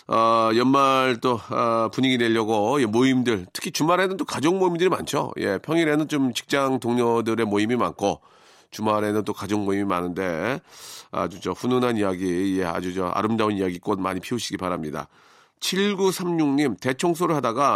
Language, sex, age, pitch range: Korean, male, 40-59, 105-145 Hz